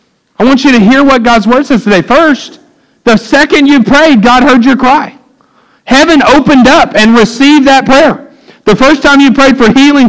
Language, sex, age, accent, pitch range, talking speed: English, male, 50-69, American, 225-285 Hz, 195 wpm